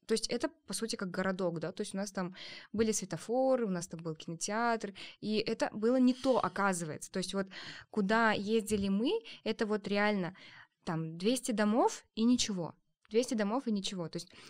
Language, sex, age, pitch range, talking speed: Russian, female, 20-39, 175-215 Hz, 190 wpm